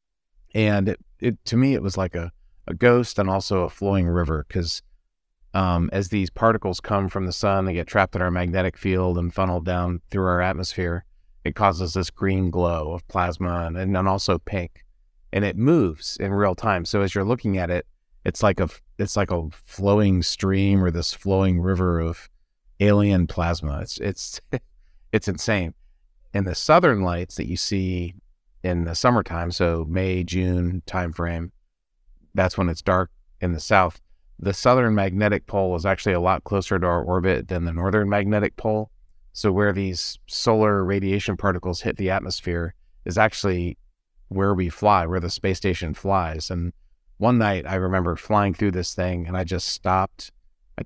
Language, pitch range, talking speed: English, 85-100 Hz, 180 wpm